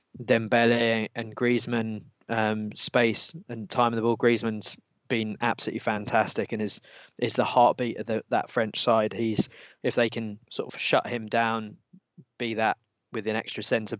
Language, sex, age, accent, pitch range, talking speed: English, male, 20-39, British, 110-125 Hz, 165 wpm